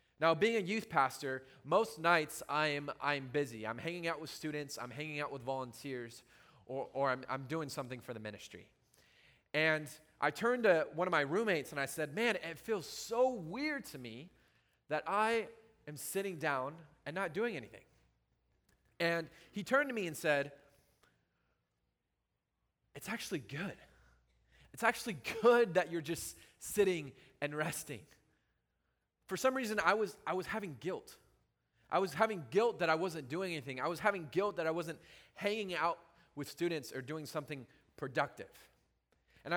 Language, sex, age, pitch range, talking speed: English, male, 20-39, 135-200 Hz, 165 wpm